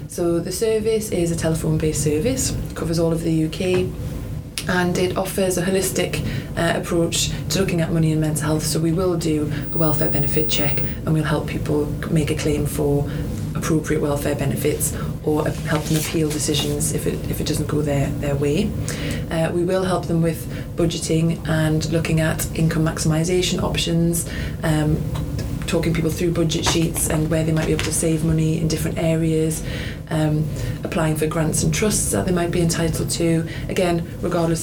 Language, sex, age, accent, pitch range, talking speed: English, female, 20-39, British, 150-170 Hz, 180 wpm